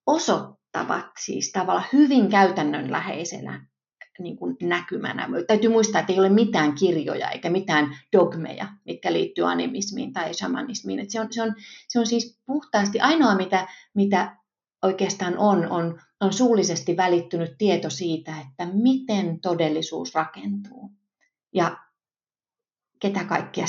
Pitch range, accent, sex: 170-220 Hz, native, female